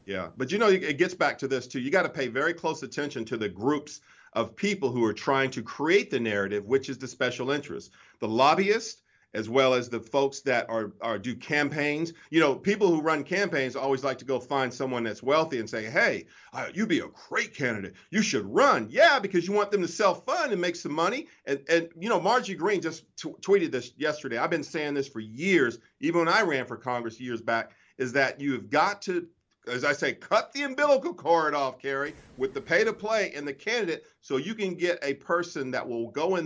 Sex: male